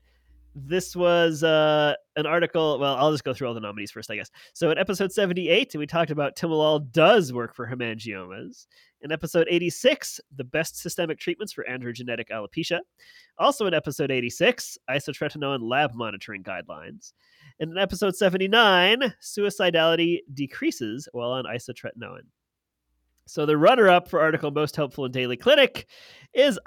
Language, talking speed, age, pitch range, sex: English, 150 wpm, 30-49, 130-185 Hz, male